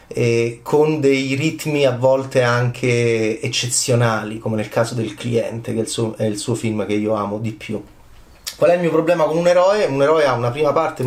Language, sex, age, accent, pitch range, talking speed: Italian, male, 30-49, native, 125-170 Hz, 200 wpm